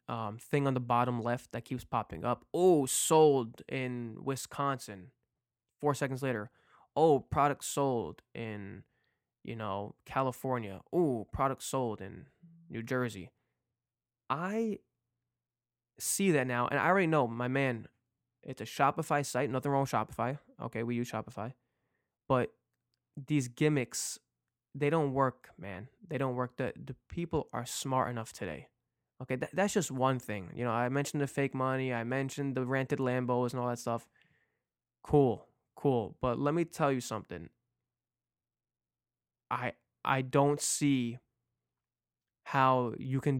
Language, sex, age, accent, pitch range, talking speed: English, male, 20-39, American, 120-140 Hz, 145 wpm